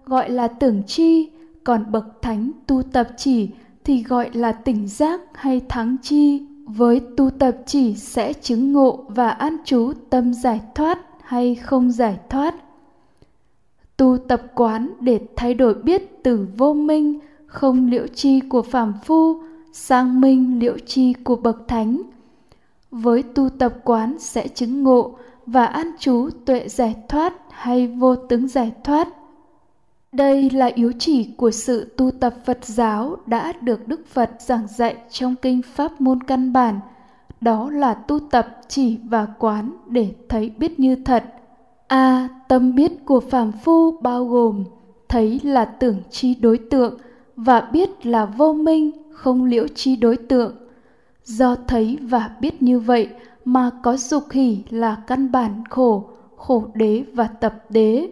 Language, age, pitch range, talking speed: Vietnamese, 10-29, 235-275 Hz, 160 wpm